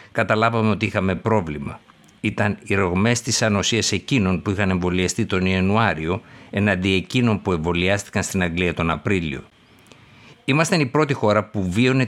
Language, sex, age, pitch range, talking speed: Greek, male, 60-79, 90-115 Hz, 145 wpm